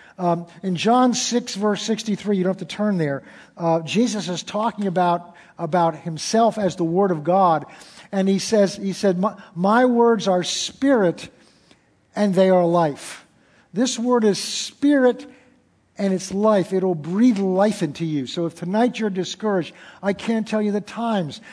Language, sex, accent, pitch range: English, male, American, 175-215 Hz